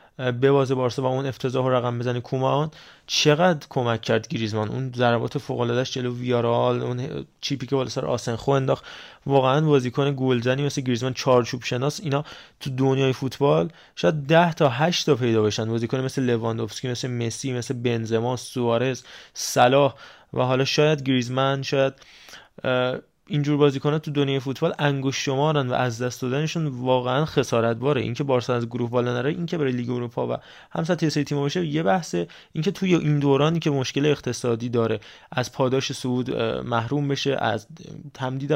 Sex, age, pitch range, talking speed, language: male, 20-39, 125-145 Hz, 160 wpm, Persian